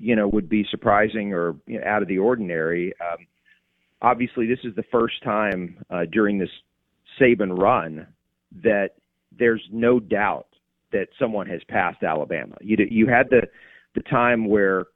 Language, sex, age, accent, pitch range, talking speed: English, male, 40-59, American, 100-125 Hz, 155 wpm